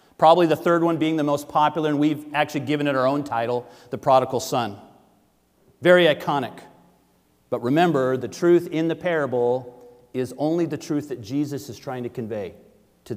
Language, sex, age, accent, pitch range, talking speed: English, male, 40-59, American, 120-175 Hz, 180 wpm